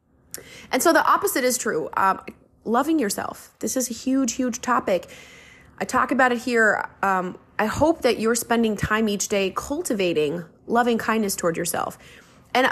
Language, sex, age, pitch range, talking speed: English, female, 20-39, 200-290 Hz, 165 wpm